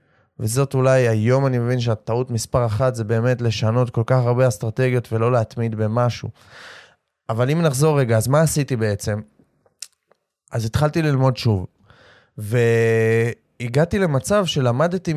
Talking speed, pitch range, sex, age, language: 130 wpm, 120-155 Hz, male, 20-39, Hebrew